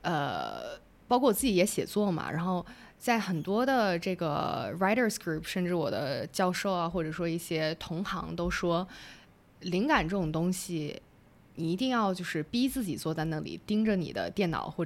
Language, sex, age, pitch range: Chinese, female, 20-39, 170-220 Hz